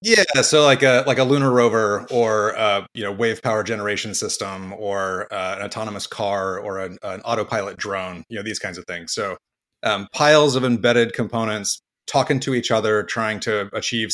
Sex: male